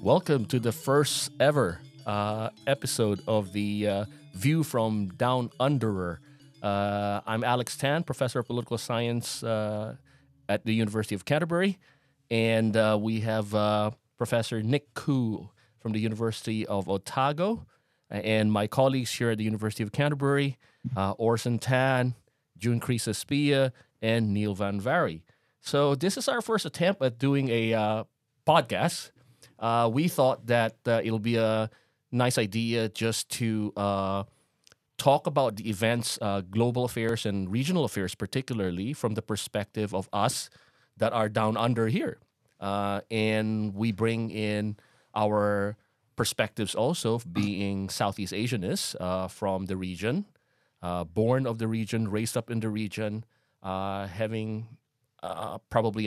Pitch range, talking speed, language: 105-125 Hz, 145 wpm, English